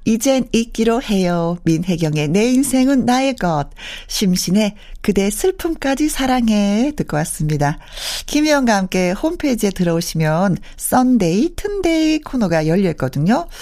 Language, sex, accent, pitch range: Korean, female, native, 170-255 Hz